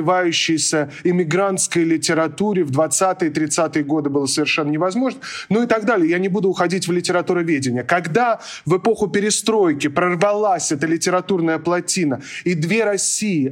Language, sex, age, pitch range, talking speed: Russian, male, 20-39, 165-210 Hz, 130 wpm